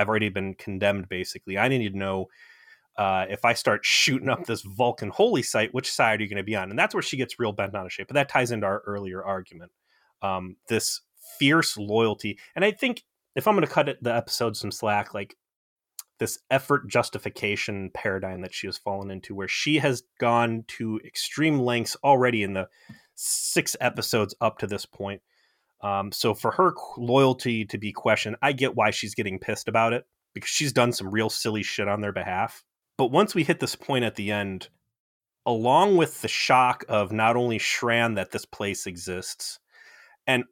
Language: English